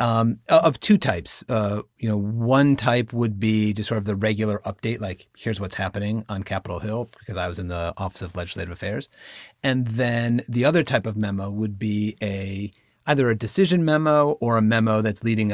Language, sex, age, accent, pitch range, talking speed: English, male, 40-59, American, 105-125 Hz, 200 wpm